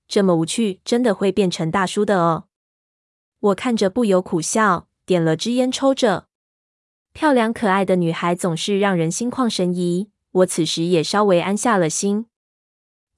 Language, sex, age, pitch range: Chinese, female, 20-39, 175-215 Hz